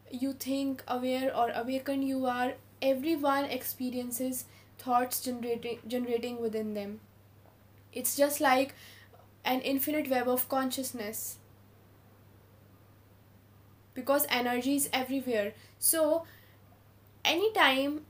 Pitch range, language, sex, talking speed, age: 235-270 Hz, English, female, 90 wpm, 10-29